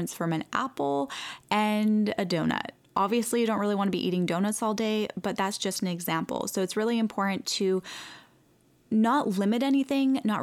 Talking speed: 180 wpm